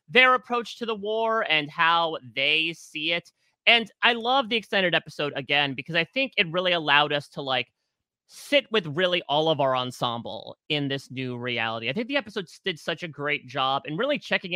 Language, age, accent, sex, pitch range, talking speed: English, 30-49, American, male, 145-225 Hz, 200 wpm